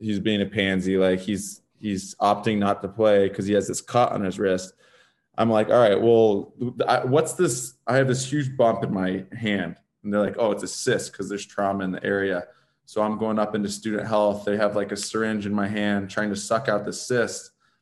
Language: English